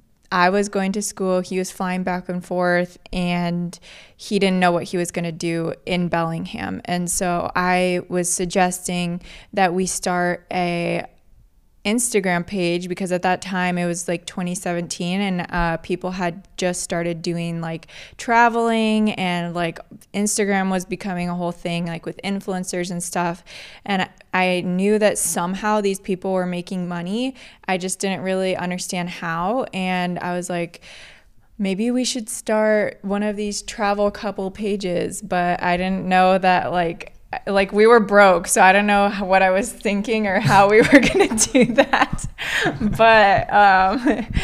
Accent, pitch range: American, 175-205 Hz